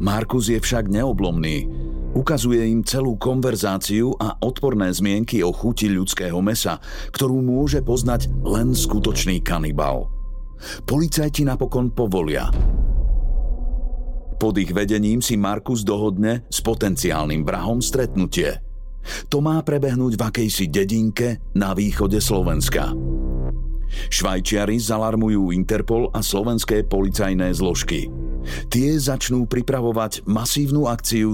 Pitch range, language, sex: 95-125 Hz, Slovak, male